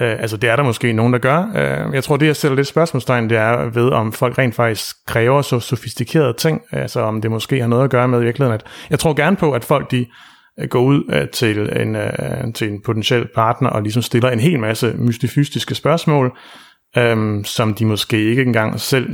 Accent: native